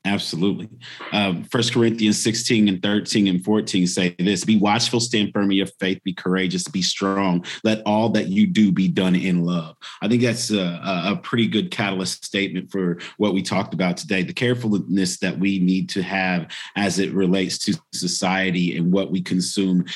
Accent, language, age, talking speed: American, English, 40-59, 185 wpm